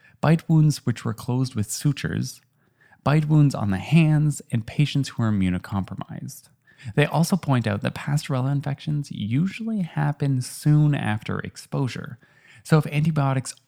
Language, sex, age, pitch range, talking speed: English, male, 20-39, 110-145 Hz, 140 wpm